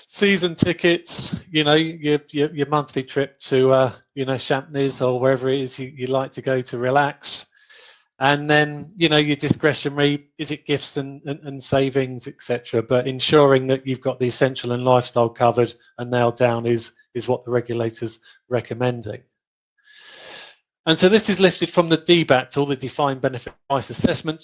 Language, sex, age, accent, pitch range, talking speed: English, male, 30-49, British, 125-150 Hz, 175 wpm